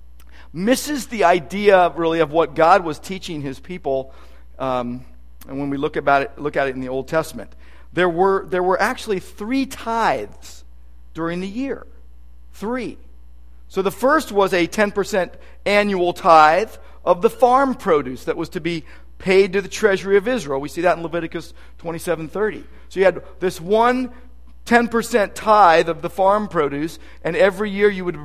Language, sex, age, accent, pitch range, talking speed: English, male, 50-69, American, 145-200 Hz, 170 wpm